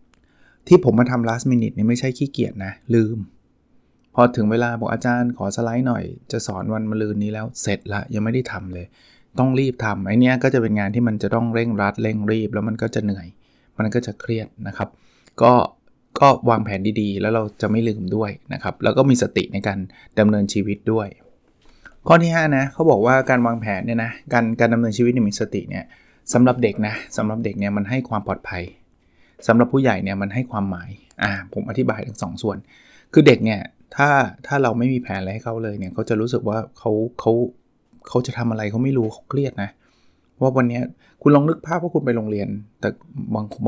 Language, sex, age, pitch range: Thai, male, 20-39, 105-125 Hz